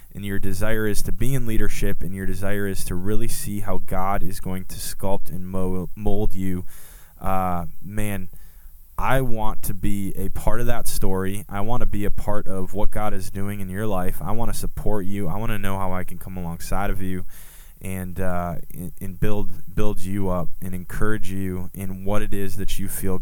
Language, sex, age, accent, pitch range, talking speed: English, male, 20-39, American, 90-105 Hz, 210 wpm